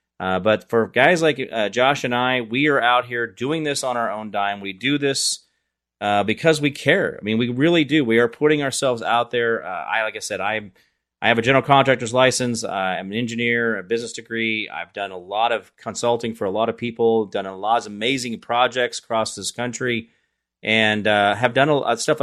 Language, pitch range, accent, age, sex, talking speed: English, 115-145 Hz, American, 30-49, male, 225 wpm